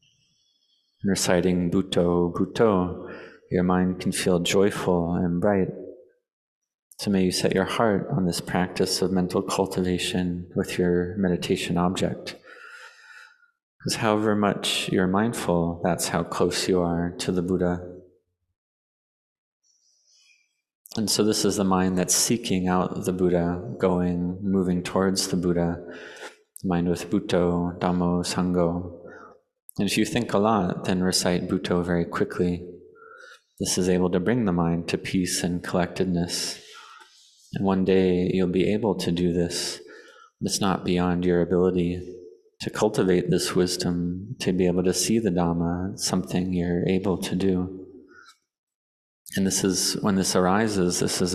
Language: English